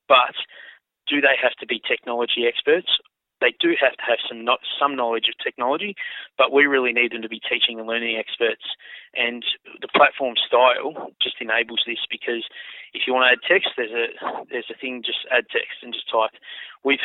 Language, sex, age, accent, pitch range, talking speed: English, male, 20-39, Australian, 115-135 Hz, 195 wpm